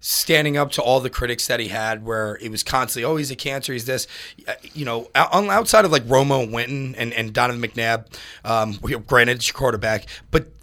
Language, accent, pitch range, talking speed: English, American, 115-150 Hz, 205 wpm